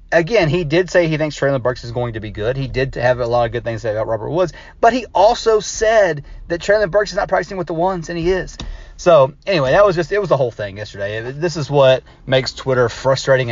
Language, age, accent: English, 30-49, American